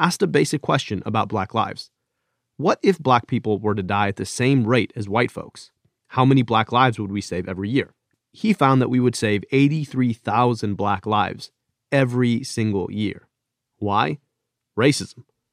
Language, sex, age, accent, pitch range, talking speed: English, male, 30-49, American, 105-130 Hz, 170 wpm